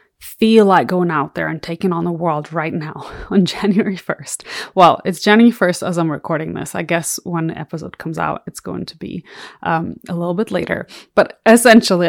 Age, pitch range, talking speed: 20-39, 180-255 Hz, 205 wpm